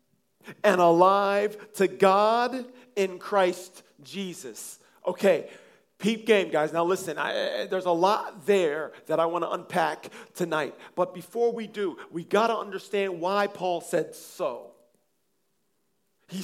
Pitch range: 160-210 Hz